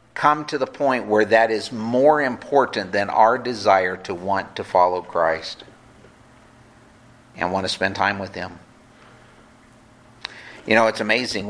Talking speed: 145 wpm